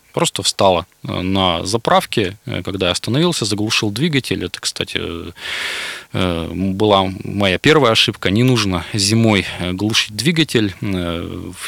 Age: 20-39